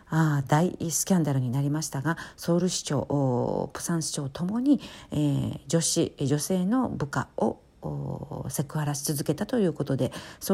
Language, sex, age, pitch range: Japanese, female, 50-69, 140-180 Hz